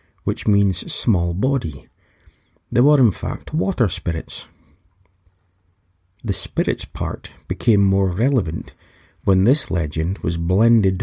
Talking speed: 115 wpm